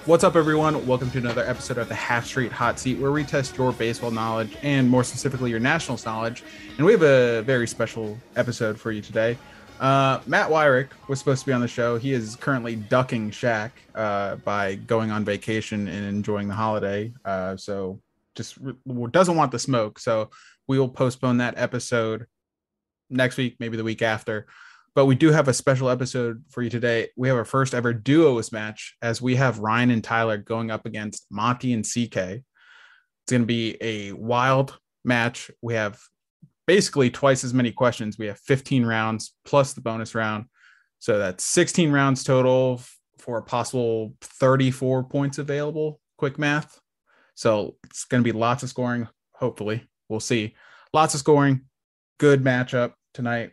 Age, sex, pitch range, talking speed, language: 20-39, male, 110-135 Hz, 180 wpm, English